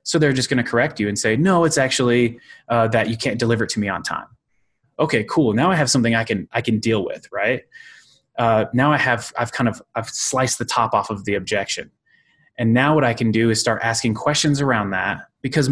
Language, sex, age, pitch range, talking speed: English, male, 20-39, 110-130 Hz, 240 wpm